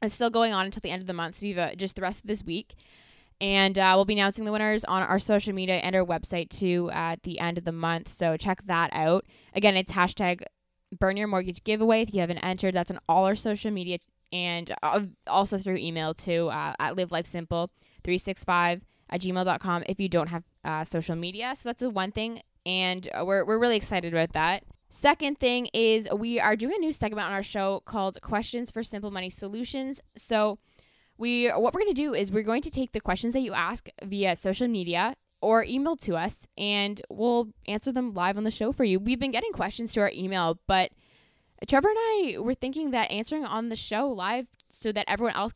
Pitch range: 180-230 Hz